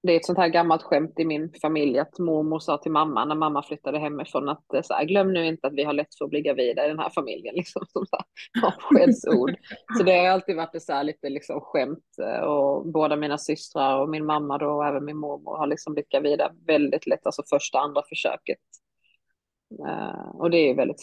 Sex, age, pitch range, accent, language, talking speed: female, 20-39, 150-185 Hz, native, Swedish, 210 wpm